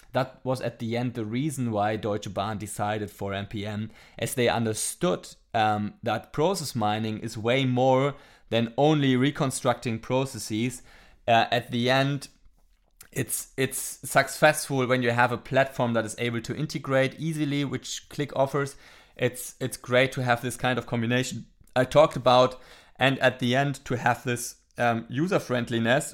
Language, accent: English, German